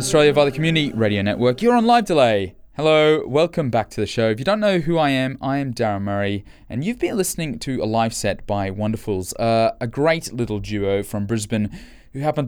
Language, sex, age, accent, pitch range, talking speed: English, male, 20-39, Australian, 105-140 Hz, 215 wpm